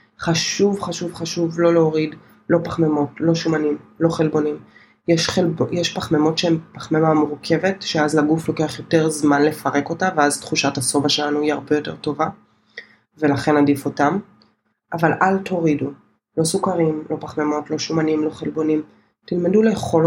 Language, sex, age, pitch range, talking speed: Hebrew, female, 20-39, 150-170 Hz, 145 wpm